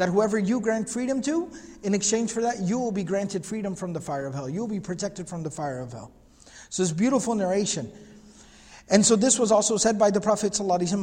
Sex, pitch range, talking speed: male, 185-225 Hz, 235 wpm